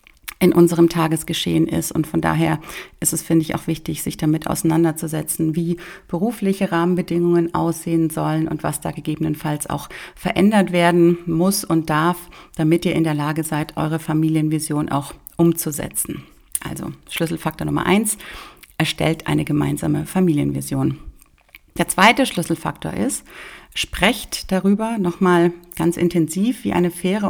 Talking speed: 135 wpm